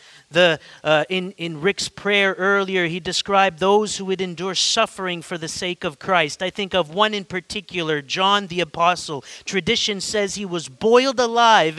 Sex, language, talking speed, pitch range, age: male, English, 175 wpm, 165-200 Hz, 30-49